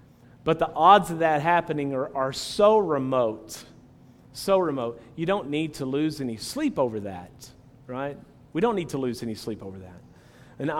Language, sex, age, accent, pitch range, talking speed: English, male, 40-59, American, 120-145 Hz, 180 wpm